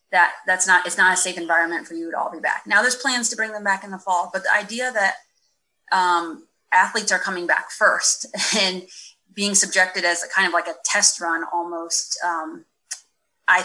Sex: female